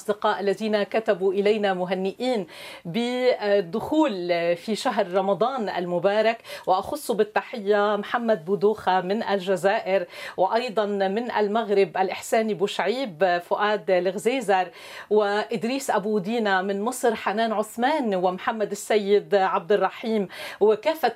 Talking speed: 100 wpm